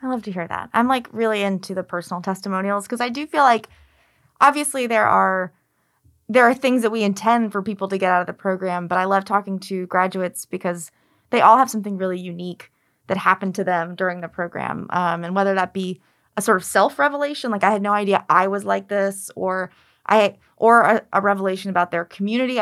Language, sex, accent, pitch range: English, female, American, 180-225 Hz